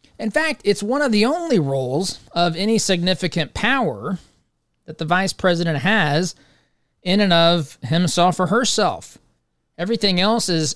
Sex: male